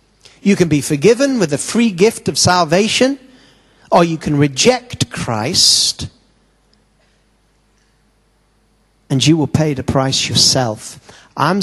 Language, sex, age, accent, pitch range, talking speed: English, male, 40-59, British, 130-165 Hz, 120 wpm